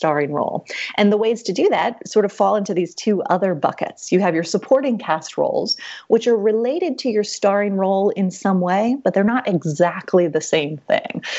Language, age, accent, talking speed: English, 30-49, American, 205 wpm